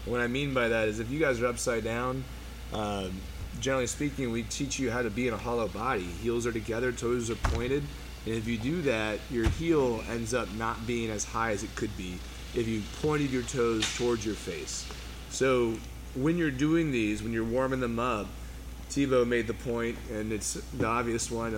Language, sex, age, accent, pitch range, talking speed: English, male, 30-49, American, 100-125 Hz, 210 wpm